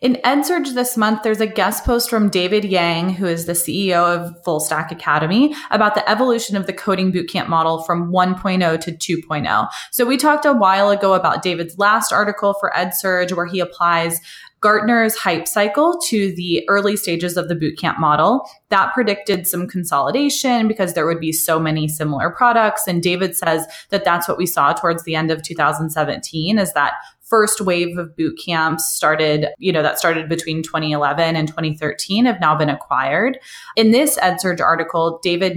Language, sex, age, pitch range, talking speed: English, female, 20-39, 160-210 Hz, 180 wpm